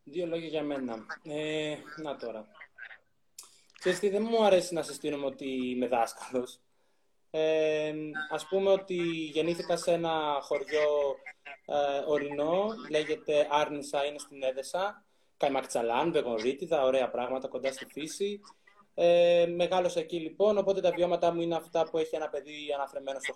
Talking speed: 140 wpm